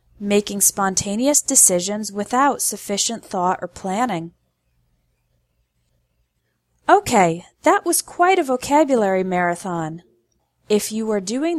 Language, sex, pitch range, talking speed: English, female, 185-255 Hz, 100 wpm